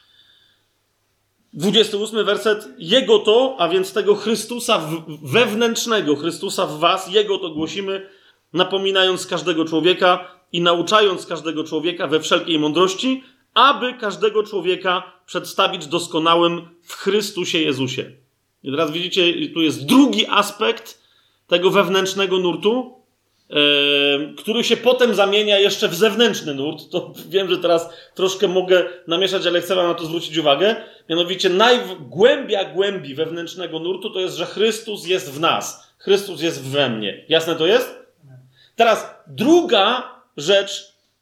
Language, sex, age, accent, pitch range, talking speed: Polish, male, 30-49, native, 170-220 Hz, 125 wpm